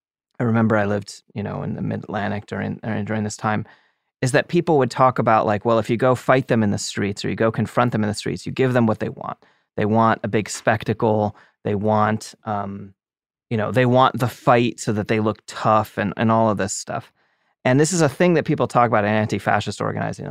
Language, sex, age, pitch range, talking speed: English, male, 30-49, 105-125 Hz, 235 wpm